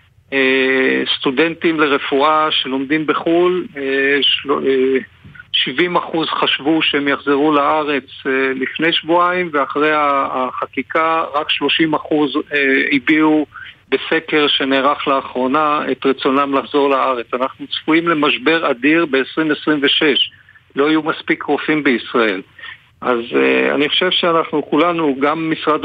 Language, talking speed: Hebrew, 95 wpm